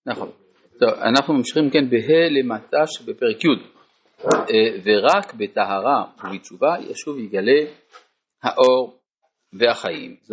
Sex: male